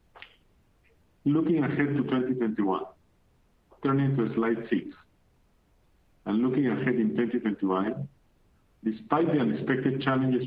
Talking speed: 95 wpm